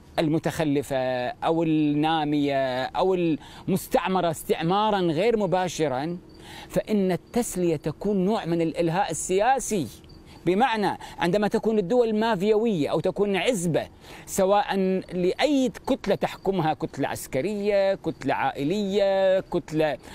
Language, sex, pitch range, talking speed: Arabic, male, 155-210 Hz, 95 wpm